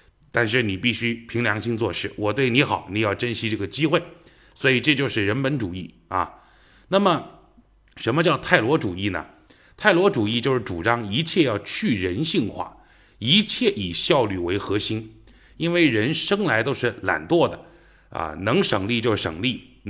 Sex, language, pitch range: male, Chinese, 110-150 Hz